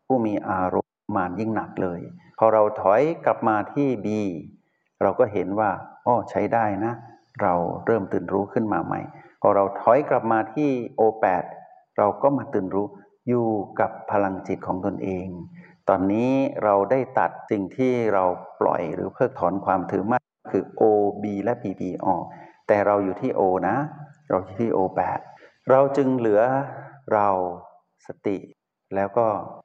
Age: 60-79